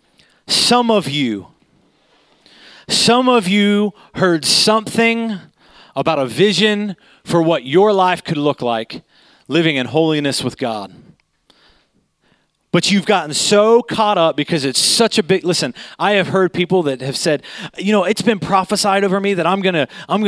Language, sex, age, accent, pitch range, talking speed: English, male, 30-49, American, 170-230 Hz, 155 wpm